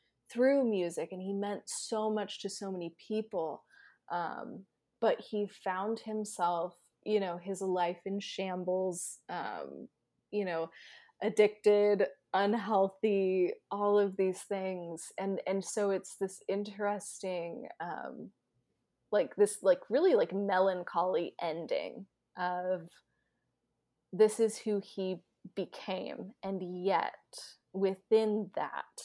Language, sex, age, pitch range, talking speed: English, female, 20-39, 185-215 Hz, 115 wpm